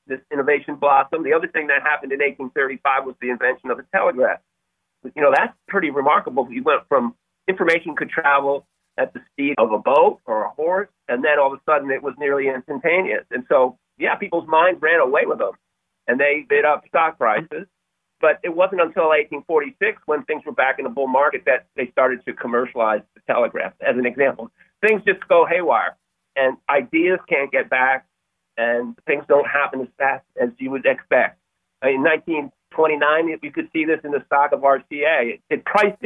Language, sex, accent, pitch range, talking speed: English, male, American, 130-165 Hz, 195 wpm